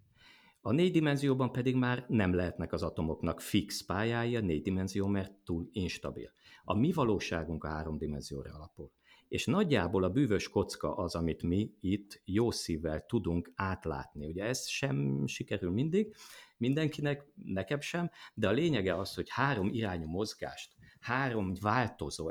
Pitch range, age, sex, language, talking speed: 80-110 Hz, 50-69, male, Hungarian, 145 wpm